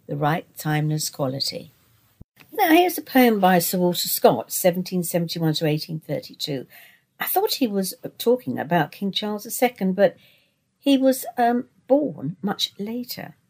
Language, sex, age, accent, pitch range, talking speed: English, female, 60-79, British, 140-225 Hz, 140 wpm